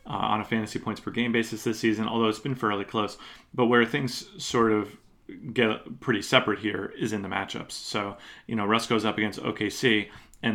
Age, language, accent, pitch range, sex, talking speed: 30-49, English, American, 100-115 Hz, male, 200 wpm